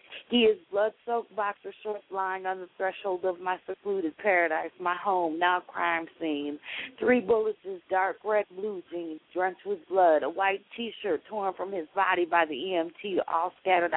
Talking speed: 170 wpm